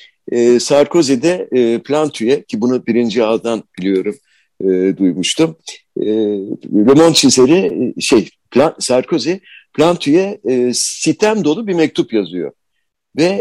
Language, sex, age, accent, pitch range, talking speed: Turkish, male, 60-79, native, 105-160 Hz, 115 wpm